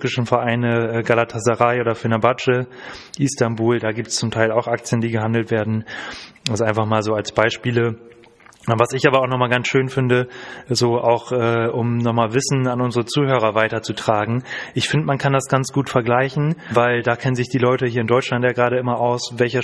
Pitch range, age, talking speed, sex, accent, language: 115-130 Hz, 20-39, 190 wpm, male, German, German